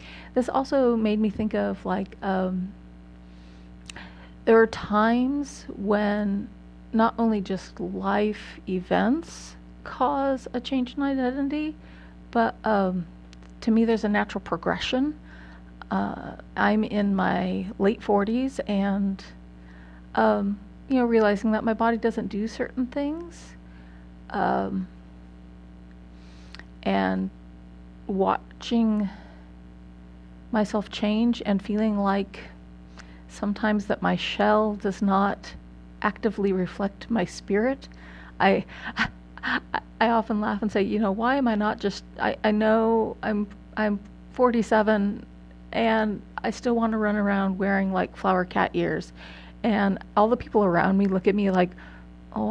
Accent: American